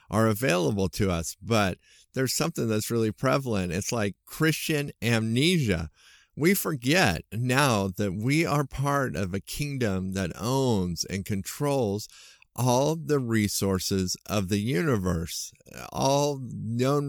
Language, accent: English, American